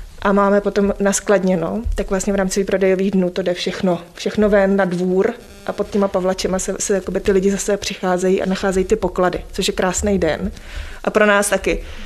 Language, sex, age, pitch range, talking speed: Czech, female, 20-39, 195-215 Hz, 195 wpm